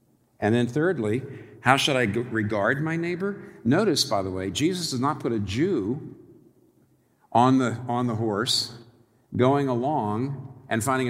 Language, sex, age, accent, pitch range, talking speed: English, male, 50-69, American, 110-140 Hz, 150 wpm